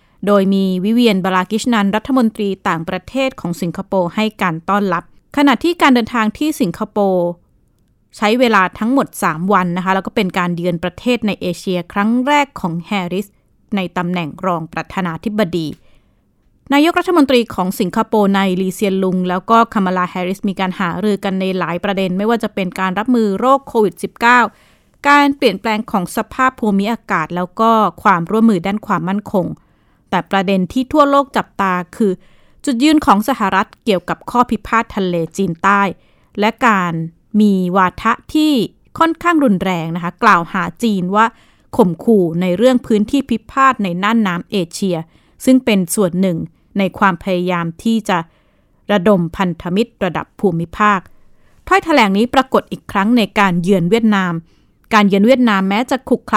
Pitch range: 185-230 Hz